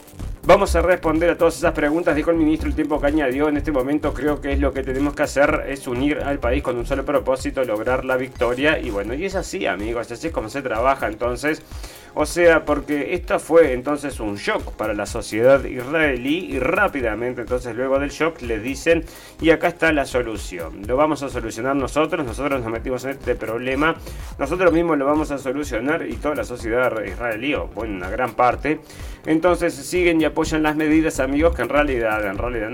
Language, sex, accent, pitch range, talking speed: Spanish, male, Argentinian, 120-155 Hz, 205 wpm